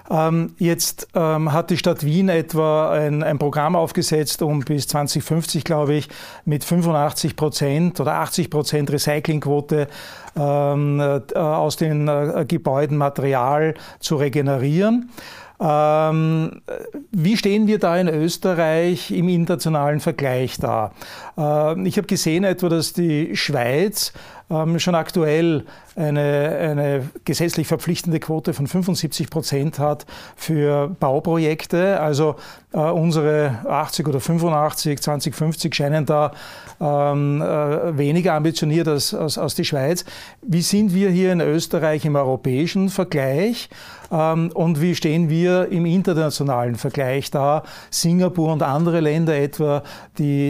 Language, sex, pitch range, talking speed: German, male, 145-170 Hz, 115 wpm